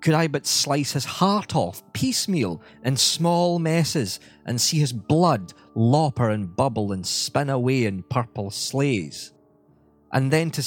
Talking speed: 150 wpm